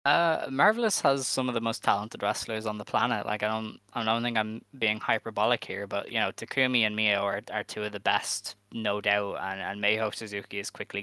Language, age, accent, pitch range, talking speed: English, 10-29, Irish, 100-110 Hz, 230 wpm